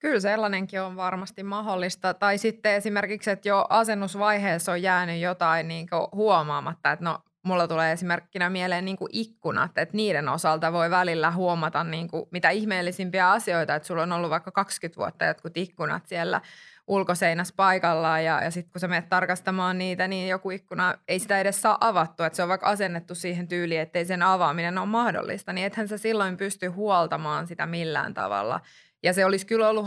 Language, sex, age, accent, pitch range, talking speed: Finnish, female, 20-39, native, 170-195 Hz, 175 wpm